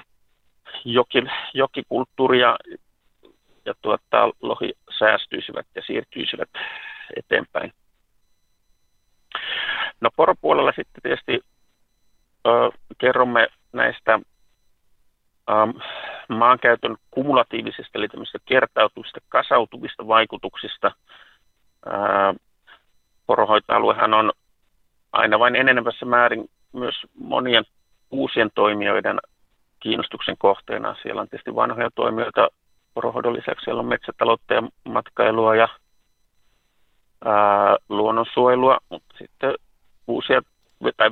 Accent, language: native, Finnish